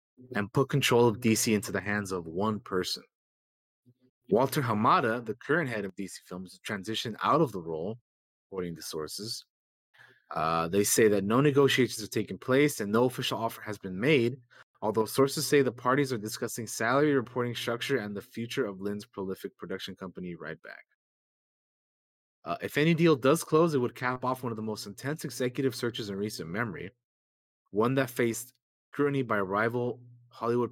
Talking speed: 175 wpm